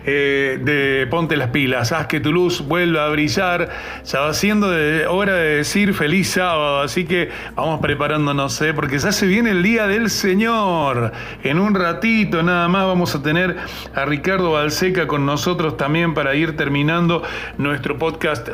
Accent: Argentinian